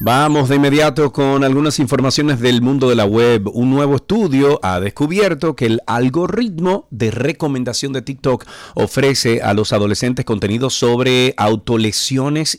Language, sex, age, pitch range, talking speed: Spanish, male, 40-59, 105-140 Hz, 145 wpm